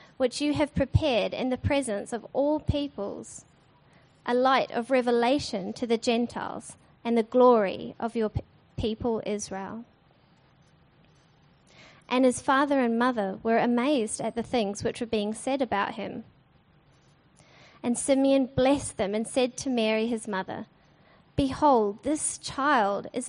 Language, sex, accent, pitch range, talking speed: English, female, Australian, 215-265 Hz, 140 wpm